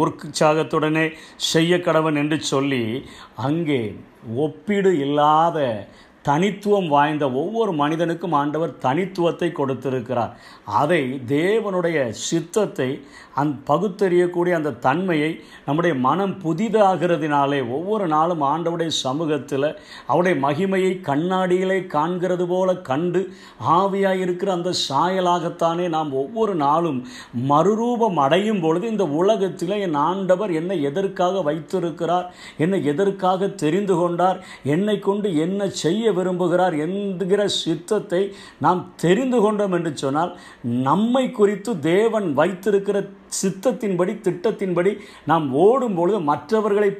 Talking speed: 85 wpm